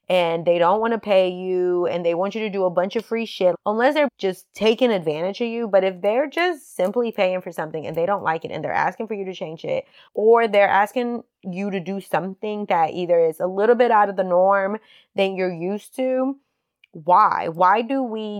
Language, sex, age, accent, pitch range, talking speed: English, female, 20-39, American, 180-230 Hz, 230 wpm